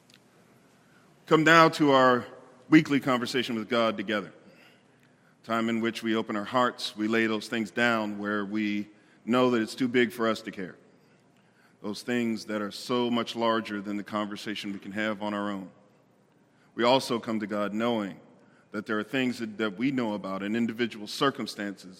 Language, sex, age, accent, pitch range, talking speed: English, male, 40-59, American, 100-120 Hz, 180 wpm